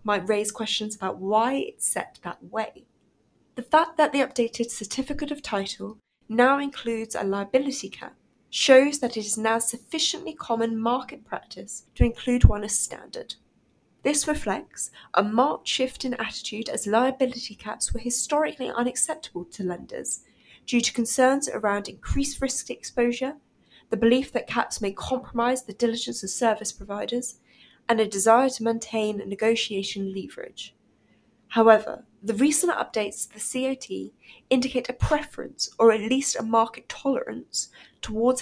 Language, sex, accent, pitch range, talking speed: English, female, British, 215-260 Hz, 145 wpm